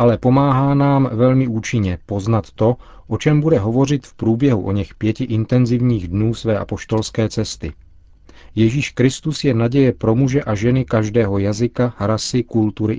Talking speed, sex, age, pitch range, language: 155 wpm, male, 40-59, 100-125 Hz, Czech